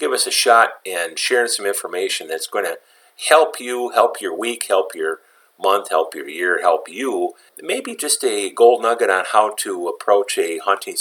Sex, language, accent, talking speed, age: male, English, American, 190 wpm, 50-69